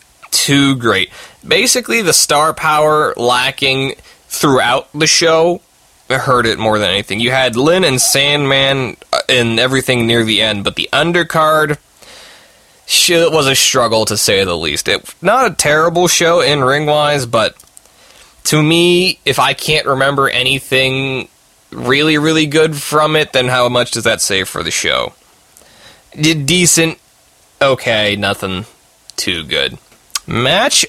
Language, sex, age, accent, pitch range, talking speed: English, male, 20-39, American, 115-155 Hz, 140 wpm